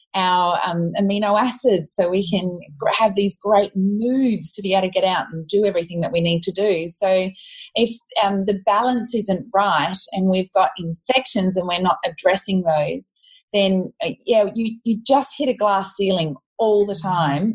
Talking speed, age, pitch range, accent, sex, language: 185 wpm, 30-49, 175-210 Hz, Australian, female, English